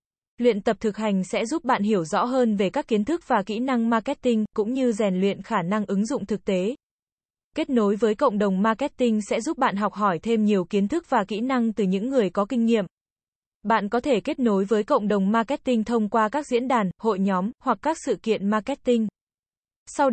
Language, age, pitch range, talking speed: Vietnamese, 20-39, 205-250 Hz, 220 wpm